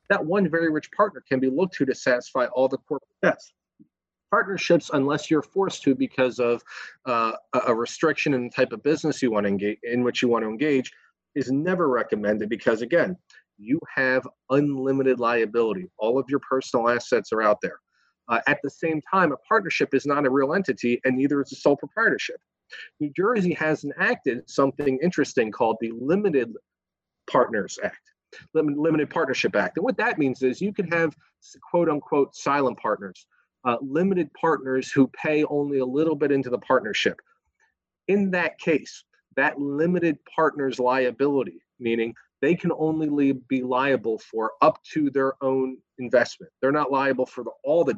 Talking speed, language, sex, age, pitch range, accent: 170 wpm, English, male, 40-59, 125-160 Hz, American